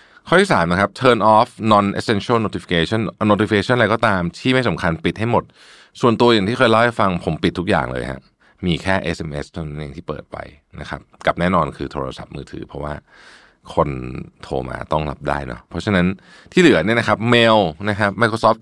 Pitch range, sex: 80-110 Hz, male